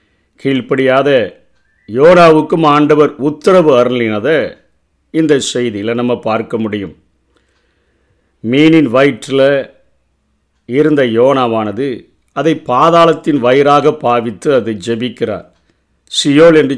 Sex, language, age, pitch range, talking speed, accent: male, Tamil, 50-69, 120-155 Hz, 80 wpm, native